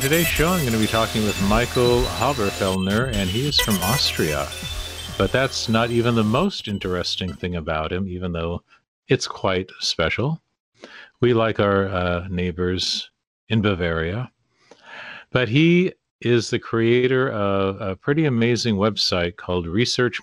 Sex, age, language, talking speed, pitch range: male, 50-69, English, 145 wpm, 95-120 Hz